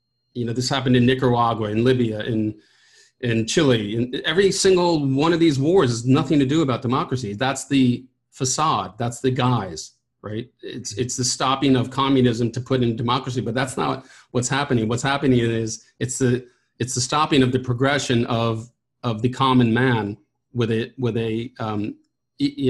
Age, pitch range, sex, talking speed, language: 40-59, 120-135 Hz, male, 180 wpm, English